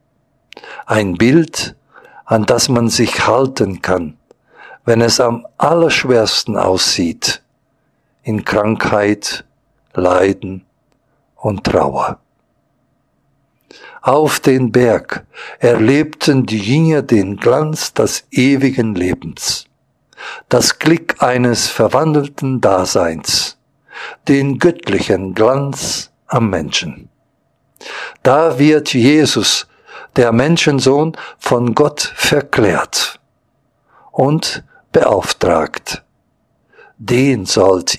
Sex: male